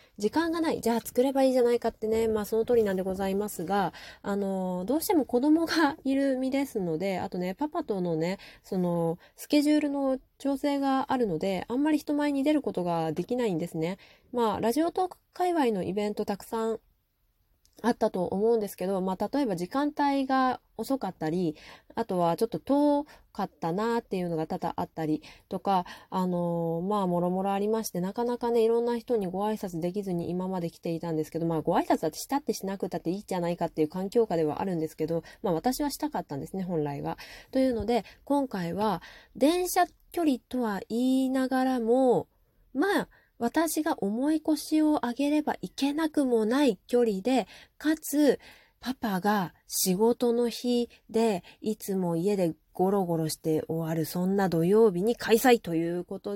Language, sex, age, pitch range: Japanese, female, 20-39, 175-255 Hz